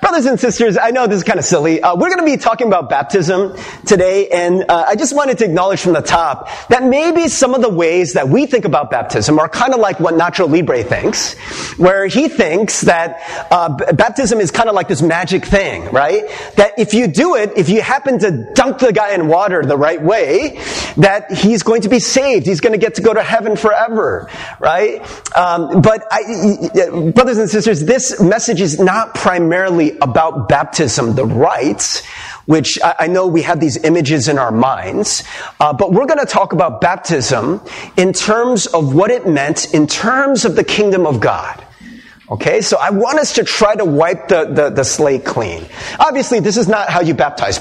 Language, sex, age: English, male, 30-49